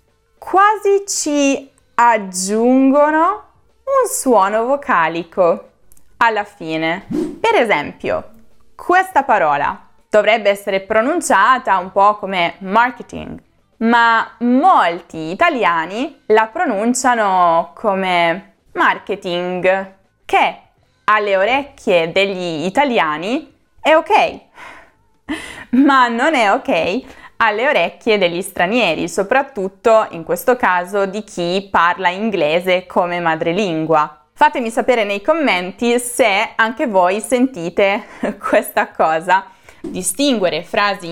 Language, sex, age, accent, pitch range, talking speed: Italian, female, 20-39, native, 185-275 Hz, 90 wpm